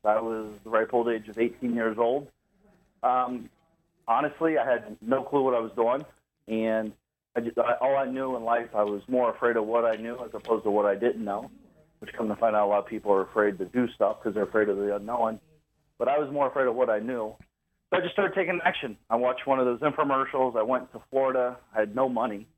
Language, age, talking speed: English, 40-59, 240 wpm